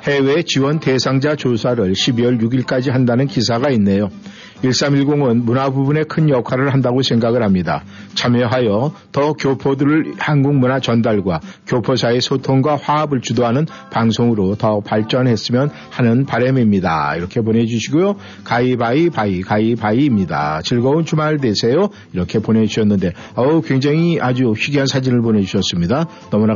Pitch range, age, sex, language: 115-145 Hz, 50-69, male, Korean